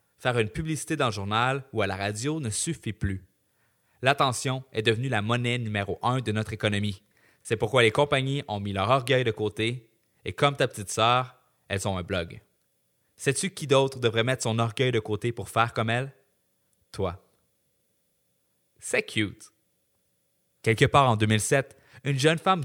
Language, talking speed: French, 170 wpm